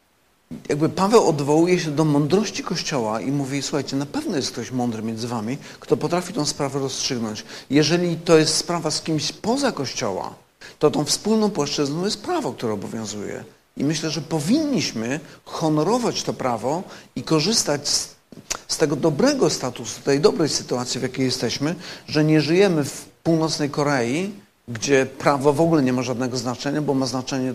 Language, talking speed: Polish, 165 wpm